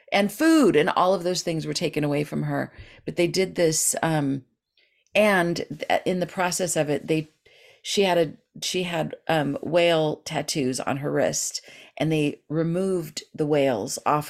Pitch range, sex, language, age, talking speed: 145-220 Hz, female, English, 40-59, 170 wpm